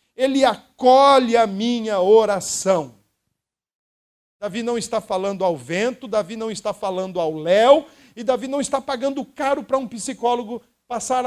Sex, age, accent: male, 50-69, Brazilian